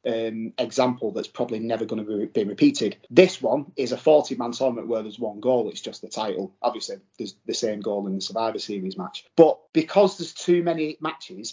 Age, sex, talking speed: 30-49, male, 215 wpm